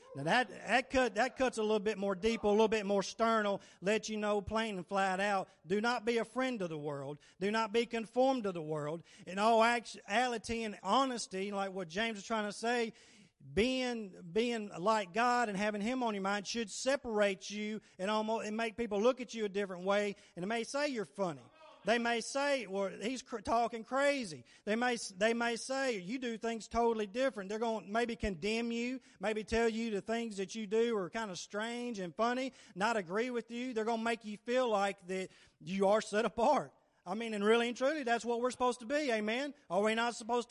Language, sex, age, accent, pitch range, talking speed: English, male, 40-59, American, 200-240 Hz, 220 wpm